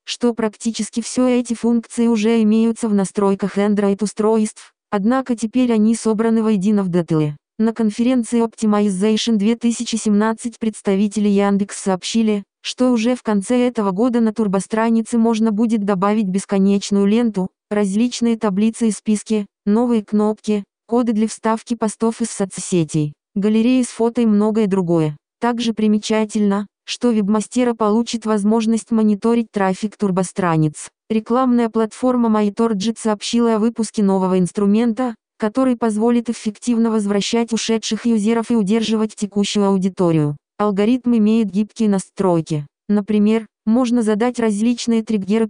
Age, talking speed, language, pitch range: 20-39, 120 wpm, Russian, 205-230 Hz